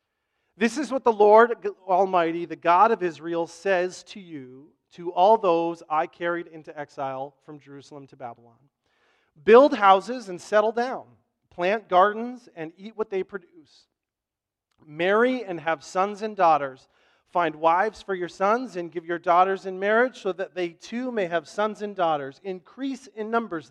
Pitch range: 160-210 Hz